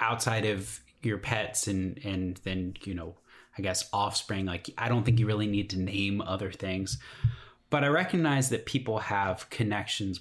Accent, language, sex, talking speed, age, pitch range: American, English, male, 175 wpm, 30-49, 100-130 Hz